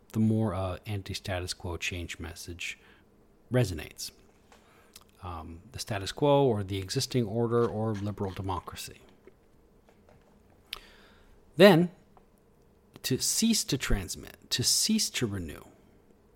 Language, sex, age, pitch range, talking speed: English, male, 40-59, 95-120 Hz, 105 wpm